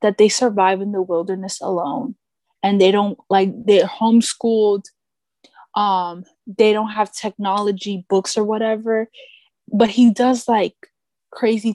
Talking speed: 135 wpm